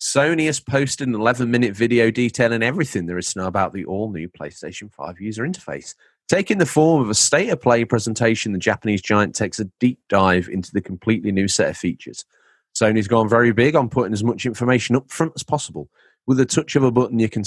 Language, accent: English, British